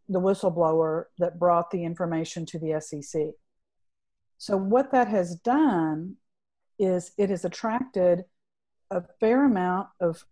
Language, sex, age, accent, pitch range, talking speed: English, female, 50-69, American, 175-215 Hz, 130 wpm